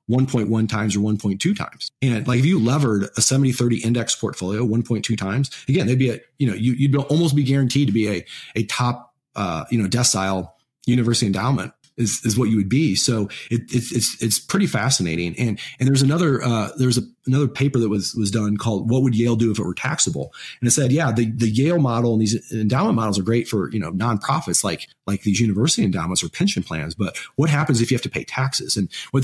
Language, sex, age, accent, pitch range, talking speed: English, male, 30-49, American, 105-130 Hz, 225 wpm